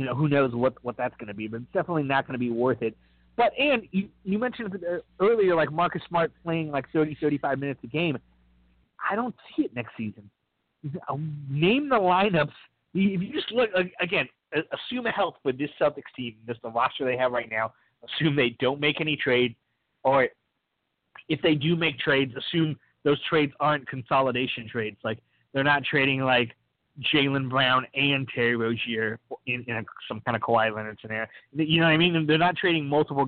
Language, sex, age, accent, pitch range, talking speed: English, male, 30-49, American, 115-160 Hz, 195 wpm